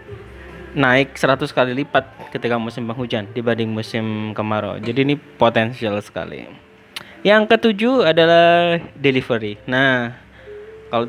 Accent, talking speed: native, 110 wpm